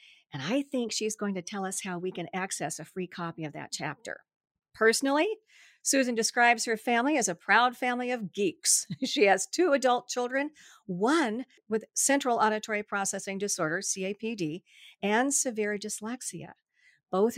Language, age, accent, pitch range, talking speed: English, 50-69, American, 190-255 Hz, 155 wpm